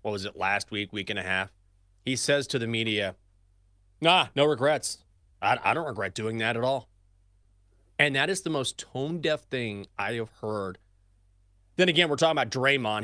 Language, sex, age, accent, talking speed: English, male, 30-49, American, 190 wpm